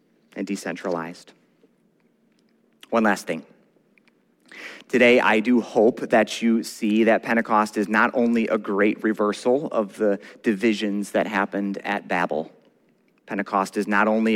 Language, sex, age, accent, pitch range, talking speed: English, male, 30-49, American, 105-125 Hz, 130 wpm